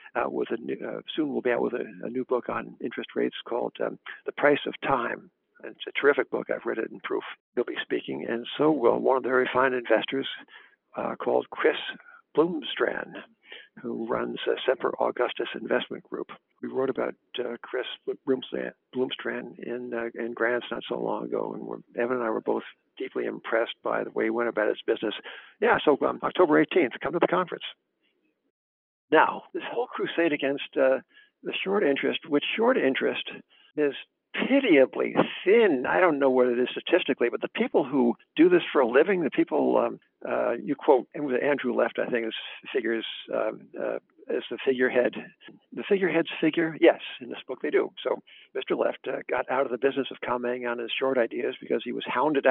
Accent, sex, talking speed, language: American, male, 195 wpm, English